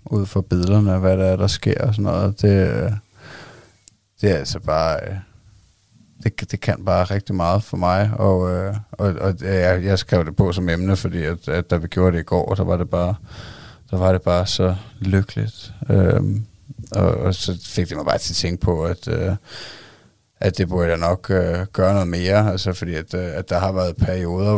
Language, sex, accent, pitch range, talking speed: Danish, male, native, 90-105 Hz, 195 wpm